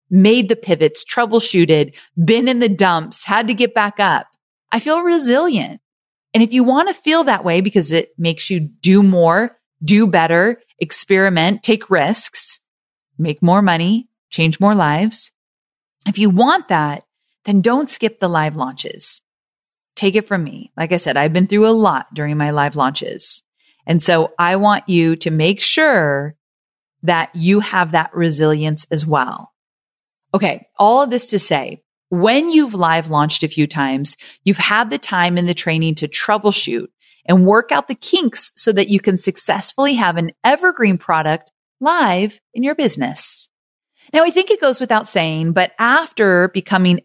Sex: female